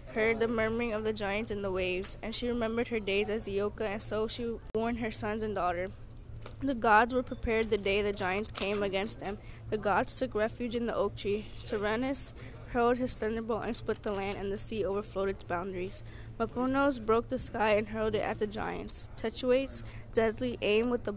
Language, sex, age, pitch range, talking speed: English, female, 10-29, 205-240 Hz, 205 wpm